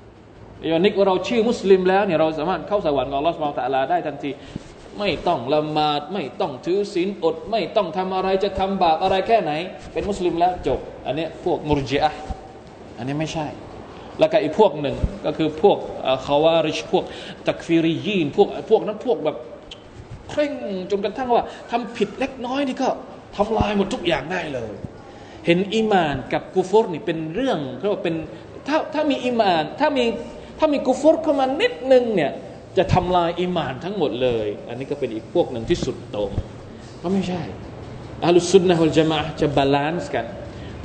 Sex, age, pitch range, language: male, 20-39, 150-210 Hz, Thai